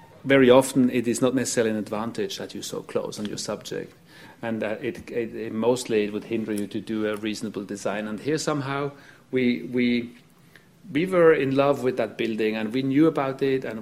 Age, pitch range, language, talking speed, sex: 40-59, 115-145 Hz, English, 215 wpm, male